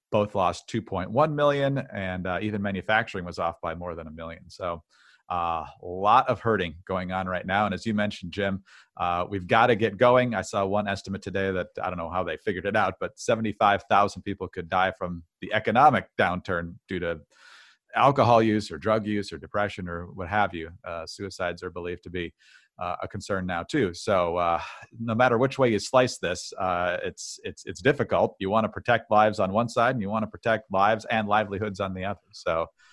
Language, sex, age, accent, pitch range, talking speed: English, male, 40-59, American, 95-120 Hz, 210 wpm